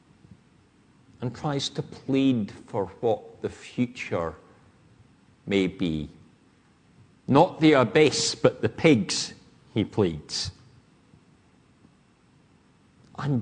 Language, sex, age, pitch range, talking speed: English, male, 60-79, 115-145 Hz, 80 wpm